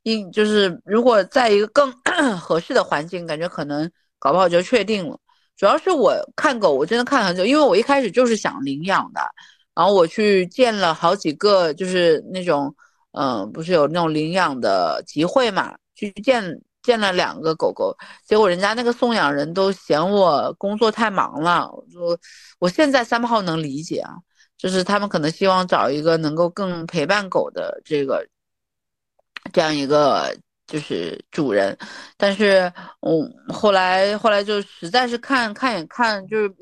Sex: female